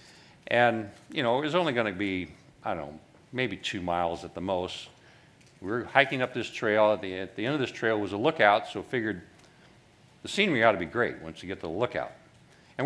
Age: 60-79